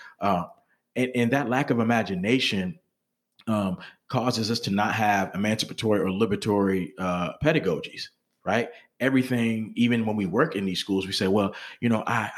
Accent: American